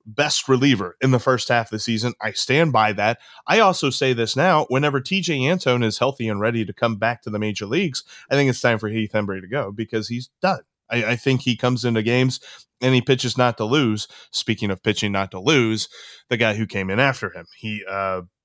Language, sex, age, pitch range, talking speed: English, male, 20-39, 110-130 Hz, 235 wpm